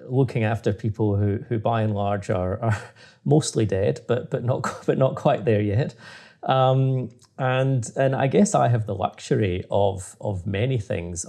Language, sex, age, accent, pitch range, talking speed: English, male, 30-49, British, 95-115 Hz, 175 wpm